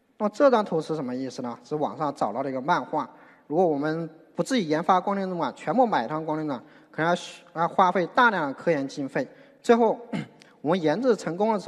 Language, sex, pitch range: Chinese, male, 160-240 Hz